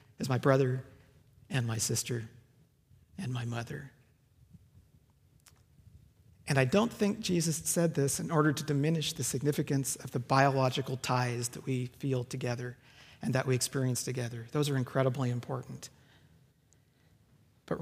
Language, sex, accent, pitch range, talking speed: English, male, American, 120-145 Hz, 135 wpm